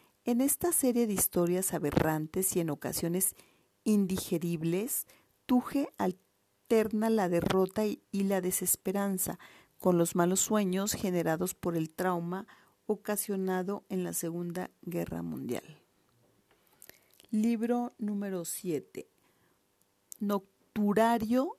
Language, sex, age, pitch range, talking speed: Spanish, female, 40-59, 170-210 Hz, 100 wpm